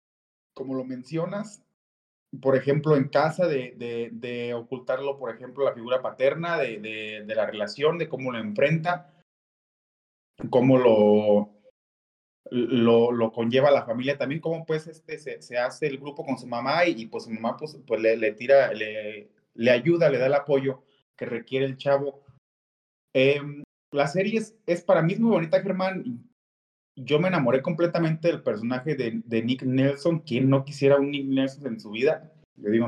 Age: 30-49